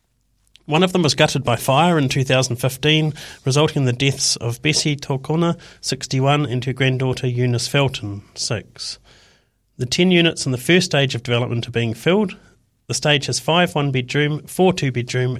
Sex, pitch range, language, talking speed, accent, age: male, 115-150 Hz, English, 165 wpm, Australian, 40-59